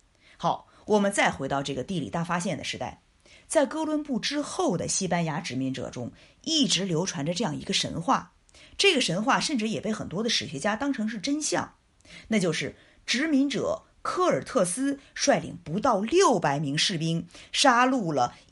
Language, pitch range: Chinese, 155-230 Hz